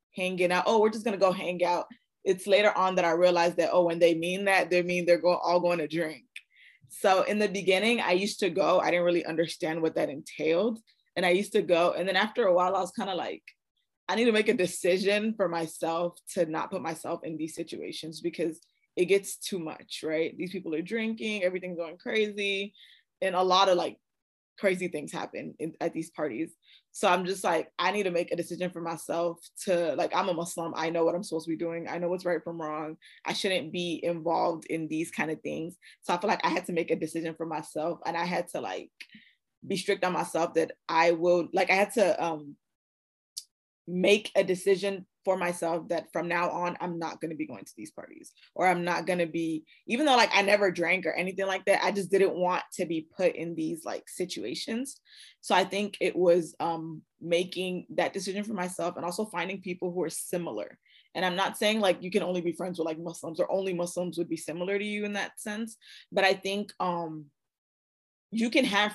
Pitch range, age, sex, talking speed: 165-195 Hz, 20-39, female, 225 wpm